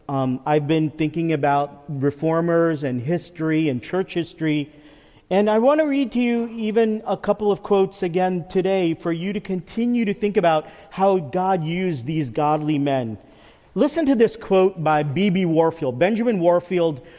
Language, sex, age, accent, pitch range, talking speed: English, male, 40-59, American, 150-195 Hz, 165 wpm